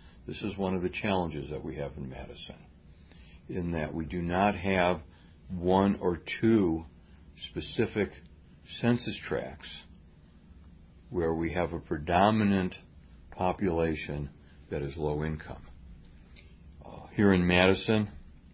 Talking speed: 120 wpm